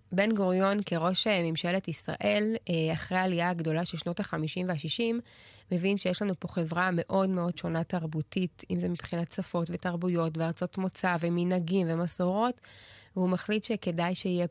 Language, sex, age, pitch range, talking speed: Hebrew, female, 20-39, 165-190 Hz, 140 wpm